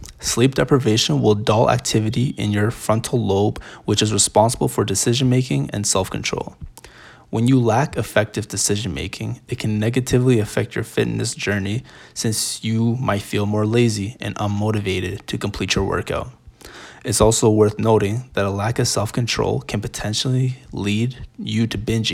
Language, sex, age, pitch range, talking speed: English, male, 20-39, 105-120 Hz, 155 wpm